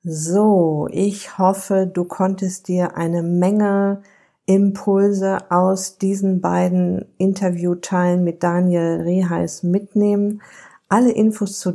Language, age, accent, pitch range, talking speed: German, 50-69, German, 175-200 Hz, 100 wpm